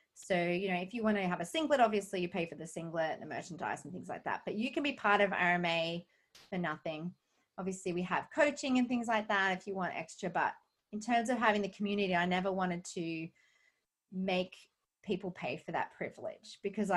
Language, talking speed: English, 220 wpm